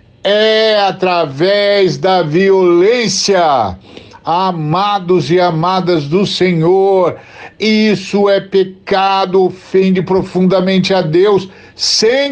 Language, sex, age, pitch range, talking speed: Portuguese, male, 60-79, 175-200 Hz, 85 wpm